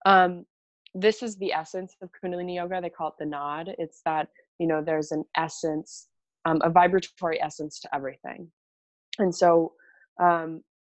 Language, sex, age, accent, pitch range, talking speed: English, female, 20-39, American, 155-175 Hz, 160 wpm